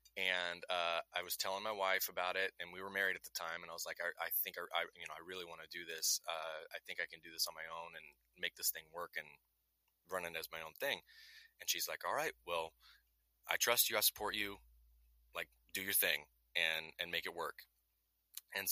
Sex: male